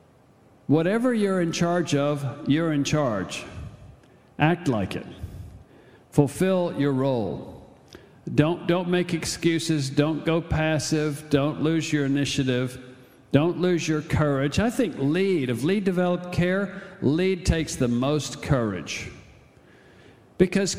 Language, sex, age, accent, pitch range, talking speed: English, male, 50-69, American, 135-180 Hz, 120 wpm